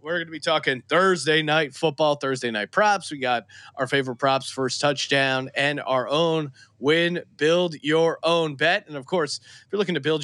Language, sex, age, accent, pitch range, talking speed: English, male, 30-49, American, 130-170 Hz, 200 wpm